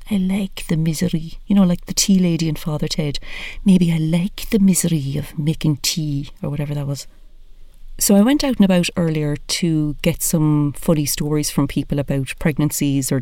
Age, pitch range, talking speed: 40-59, 140-165 Hz, 190 wpm